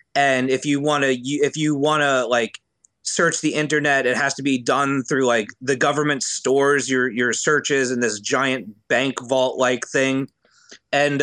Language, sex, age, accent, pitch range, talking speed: English, male, 30-49, American, 125-145 Hz, 180 wpm